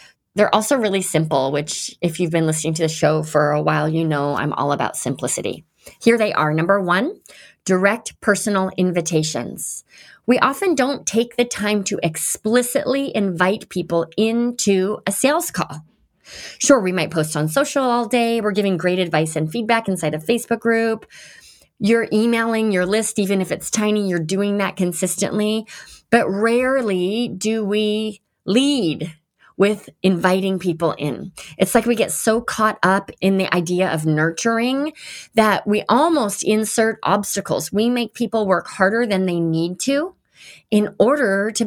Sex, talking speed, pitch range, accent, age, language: female, 160 wpm, 175-230 Hz, American, 30-49, English